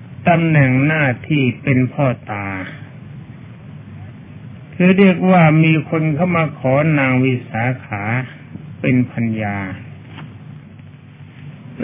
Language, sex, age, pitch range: Thai, male, 60-79, 125-160 Hz